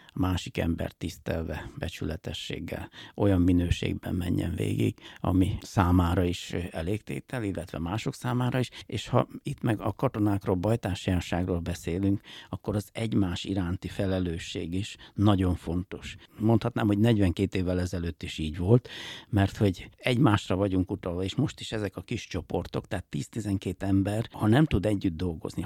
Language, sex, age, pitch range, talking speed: Hungarian, male, 60-79, 90-110 Hz, 140 wpm